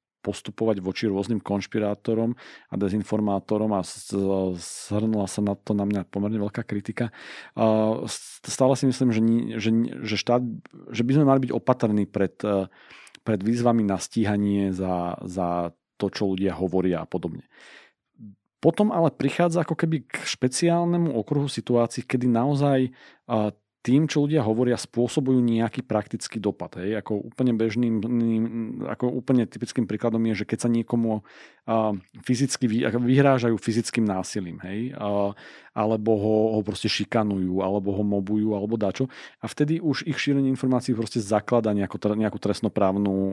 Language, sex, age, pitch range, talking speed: Slovak, male, 40-59, 100-120 Hz, 145 wpm